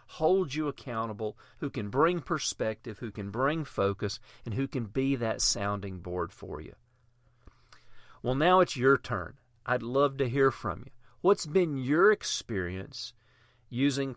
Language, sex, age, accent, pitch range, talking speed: English, male, 40-59, American, 110-145 Hz, 155 wpm